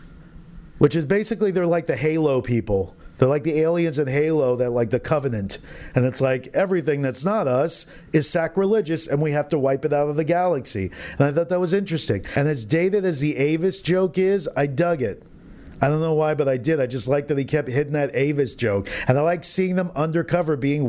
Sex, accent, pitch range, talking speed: male, American, 140-180 Hz, 225 wpm